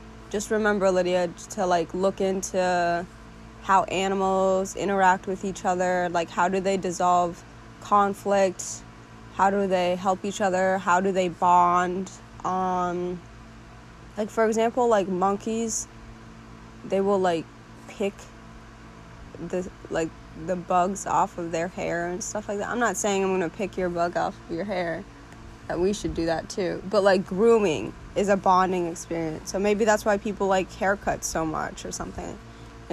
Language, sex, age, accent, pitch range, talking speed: English, female, 20-39, American, 115-195 Hz, 160 wpm